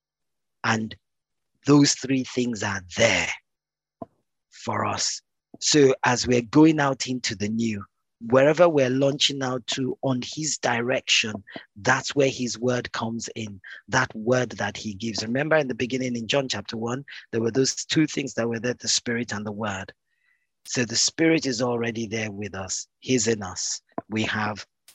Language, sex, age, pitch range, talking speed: English, male, 40-59, 105-130 Hz, 165 wpm